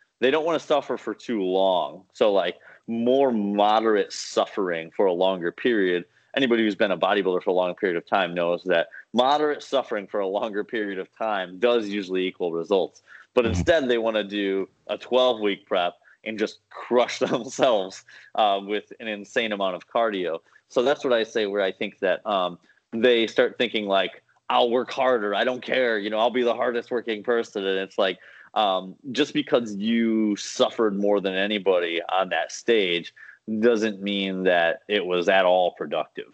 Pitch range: 90-115 Hz